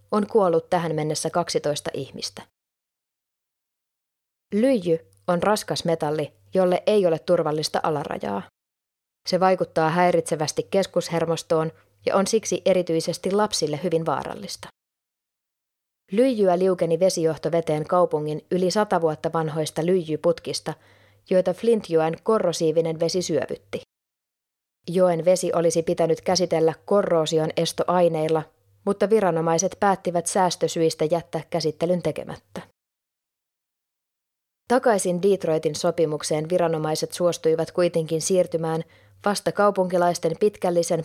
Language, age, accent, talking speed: Finnish, 20-39, native, 95 wpm